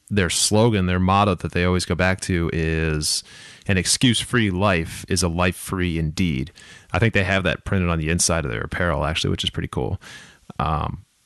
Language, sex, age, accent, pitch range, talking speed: English, male, 20-39, American, 85-110 Hz, 205 wpm